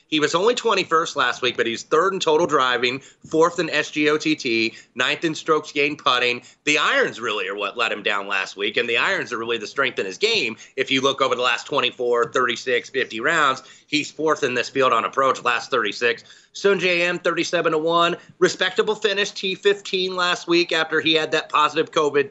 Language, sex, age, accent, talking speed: English, male, 30-49, American, 195 wpm